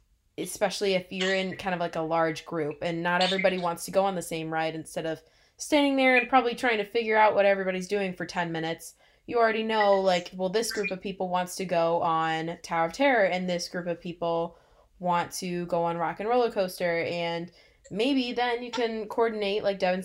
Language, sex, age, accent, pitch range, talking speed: English, female, 20-39, American, 170-205 Hz, 220 wpm